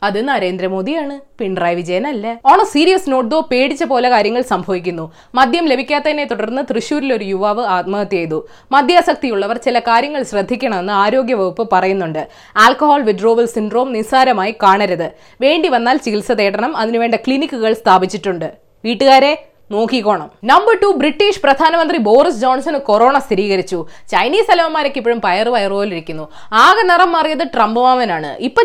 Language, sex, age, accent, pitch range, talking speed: Malayalam, female, 20-39, native, 220-330 Hz, 120 wpm